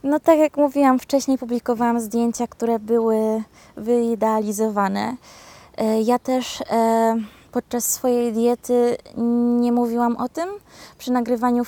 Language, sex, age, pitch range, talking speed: Polish, female, 20-39, 225-250 Hz, 120 wpm